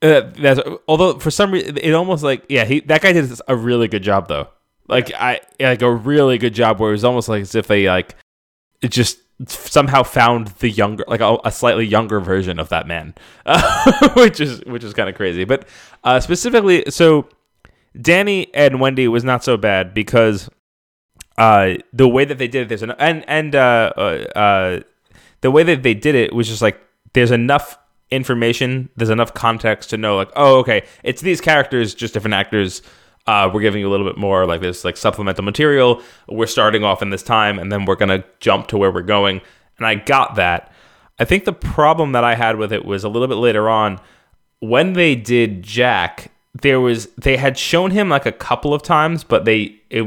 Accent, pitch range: American, 105-135 Hz